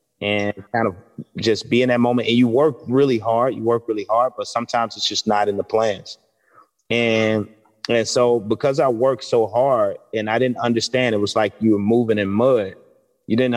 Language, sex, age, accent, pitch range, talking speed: English, male, 30-49, American, 105-120 Hz, 210 wpm